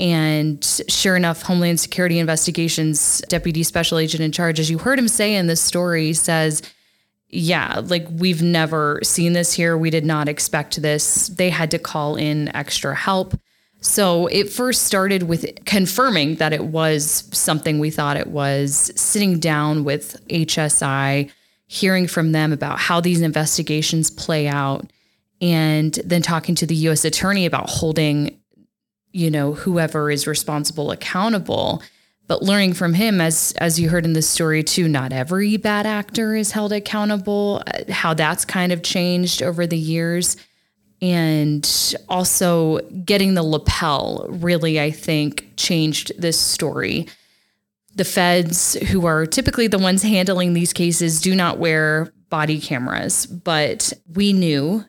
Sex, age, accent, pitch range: female, 10-29, American, 155-180 Hz